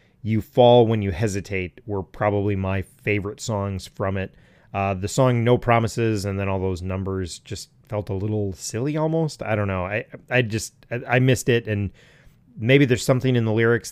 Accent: American